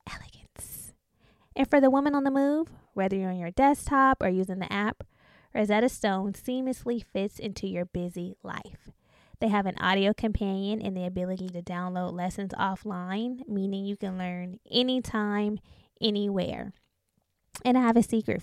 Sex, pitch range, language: female, 195-240 Hz, English